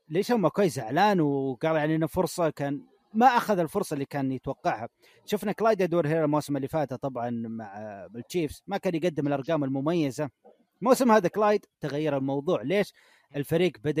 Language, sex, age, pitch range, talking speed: Arabic, male, 30-49, 140-190 Hz, 160 wpm